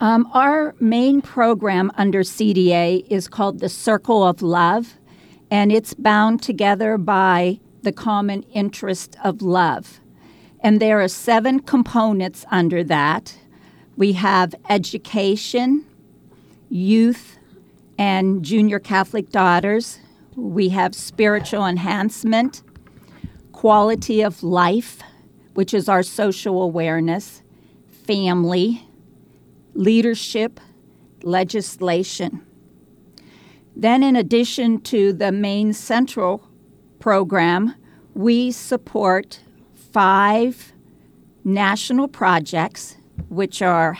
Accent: American